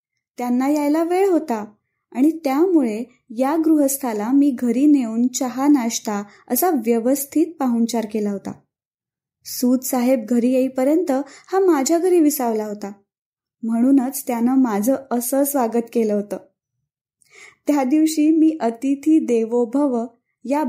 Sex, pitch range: female, 230-290 Hz